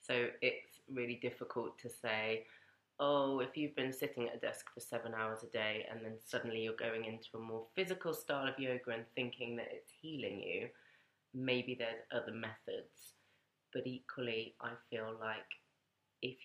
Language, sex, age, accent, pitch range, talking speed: English, female, 20-39, British, 115-140 Hz, 170 wpm